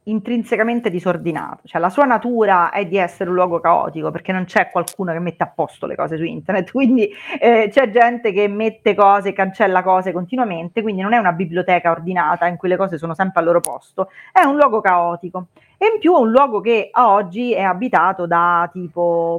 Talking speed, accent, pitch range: 205 wpm, native, 185-245 Hz